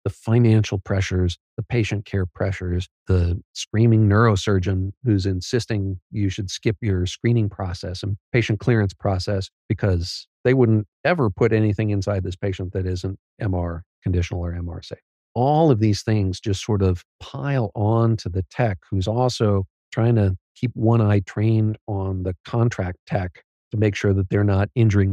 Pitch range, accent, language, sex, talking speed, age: 95-115 Hz, American, English, male, 165 wpm, 50-69